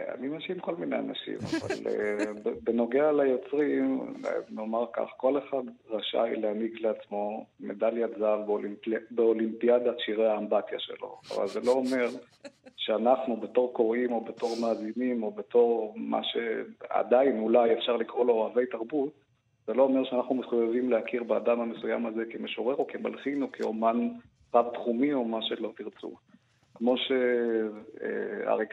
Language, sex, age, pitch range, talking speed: Hebrew, male, 50-69, 110-130 Hz, 135 wpm